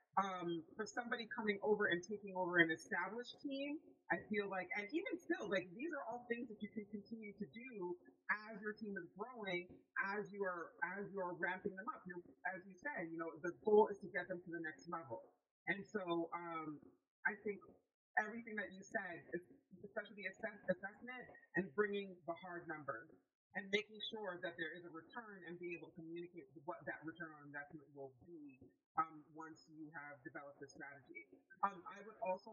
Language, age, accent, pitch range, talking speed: English, 30-49, American, 165-210 Hz, 200 wpm